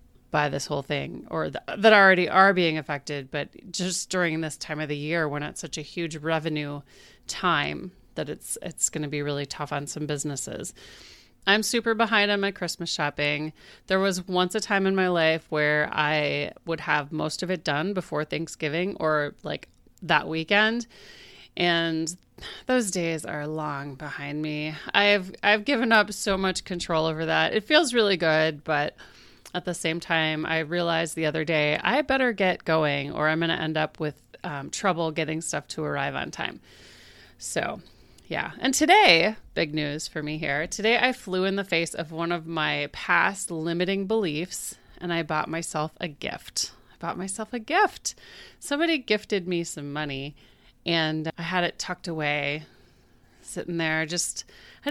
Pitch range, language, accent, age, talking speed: 150-190 Hz, English, American, 30-49, 180 wpm